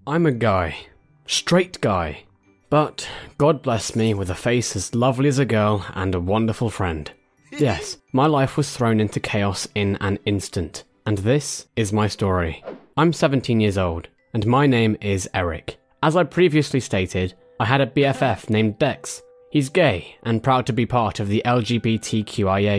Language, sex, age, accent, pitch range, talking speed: English, male, 10-29, British, 100-135 Hz, 170 wpm